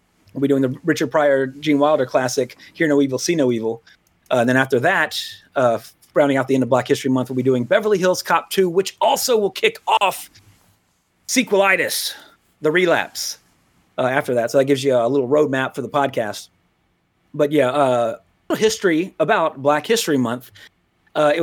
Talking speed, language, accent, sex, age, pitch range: 190 wpm, English, American, male, 30-49, 130-170 Hz